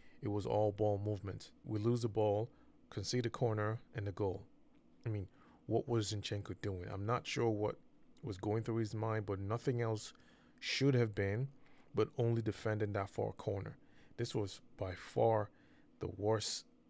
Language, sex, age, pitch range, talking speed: English, male, 20-39, 100-115 Hz, 170 wpm